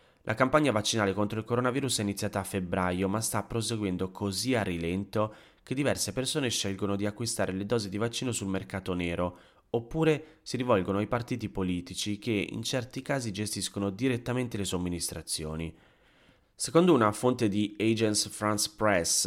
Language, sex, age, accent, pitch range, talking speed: Italian, male, 30-49, native, 90-110 Hz, 155 wpm